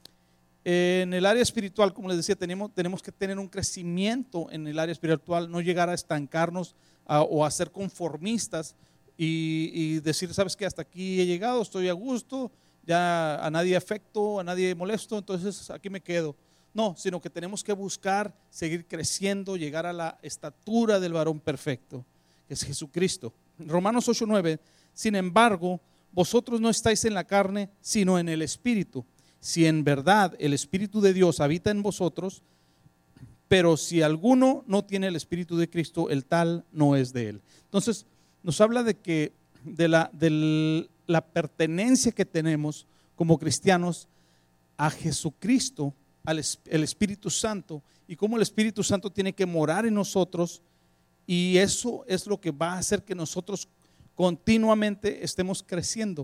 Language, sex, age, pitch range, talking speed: Spanish, male, 40-59, 160-200 Hz, 160 wpm